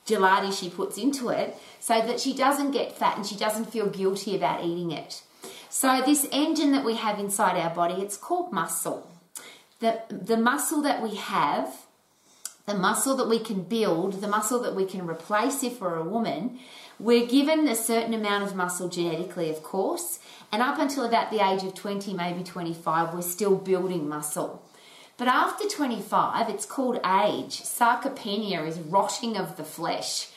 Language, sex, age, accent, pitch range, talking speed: English, female, 30-49, Australian, 185-245 Hz, 175 wpm